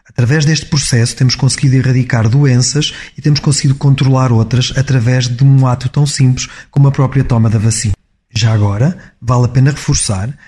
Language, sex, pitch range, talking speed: Portuguese, male, 110-135 Hz, 170 wpm